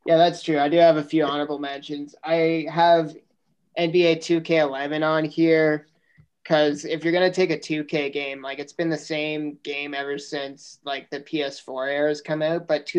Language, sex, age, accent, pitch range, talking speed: English, male, 30-49, American, 145-160 Hz, 185 wpm